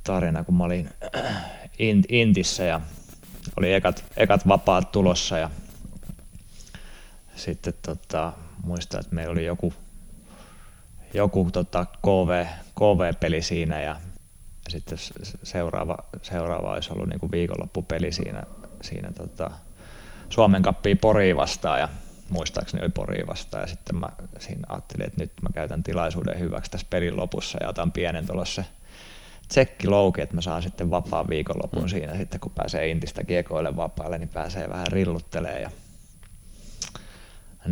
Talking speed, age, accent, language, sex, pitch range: 130 wpm, 30-49, native, Finnish, male, 85-100 Hz